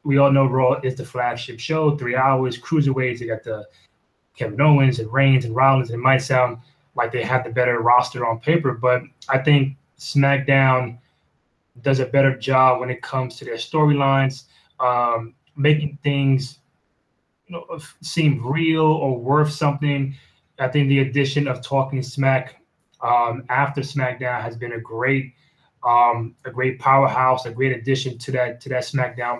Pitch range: 130-150 Hz